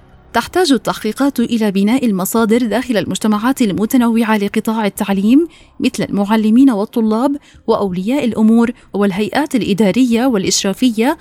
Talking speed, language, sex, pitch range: 95 wpm, Arabic, female, 205-250 Hz